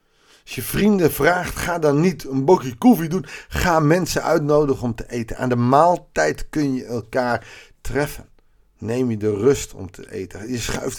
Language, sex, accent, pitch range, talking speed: Dutch, male, Dutch, 115-175 Hz, 180 wpm